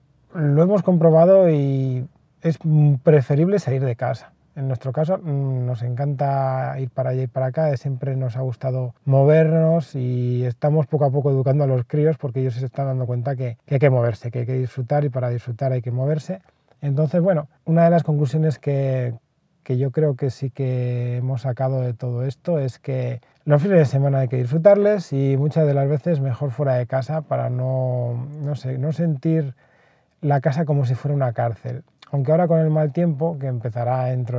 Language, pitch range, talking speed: Spanish, 130-160 Hz, 195 wpm